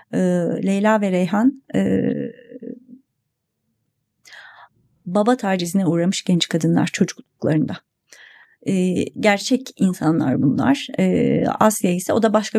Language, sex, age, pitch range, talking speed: Turkish, female, 40-59, 190-250 Hz, 100 wpm